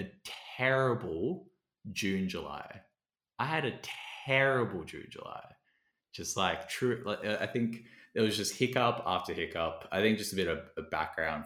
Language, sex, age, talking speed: English, male, 20-39, 155 wpm